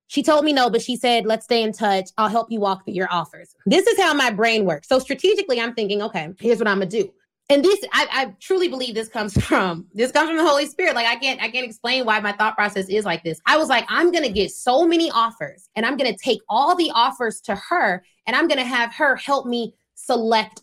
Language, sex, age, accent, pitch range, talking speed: English, female, 20-39, American, 210-295 Hz, 270 wpm